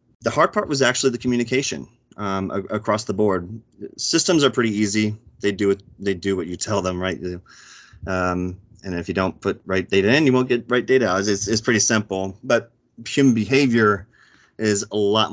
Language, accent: English, American